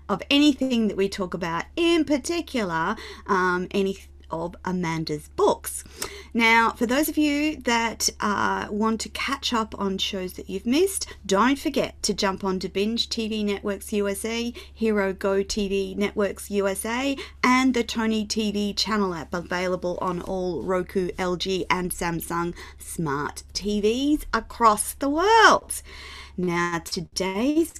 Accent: Australian